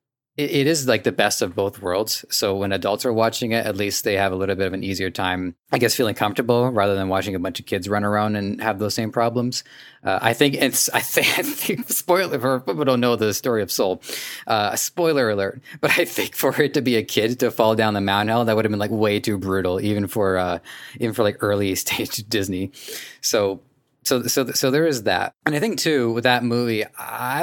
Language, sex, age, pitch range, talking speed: English, male, 20-39, 100-125 Hz, 235 wpm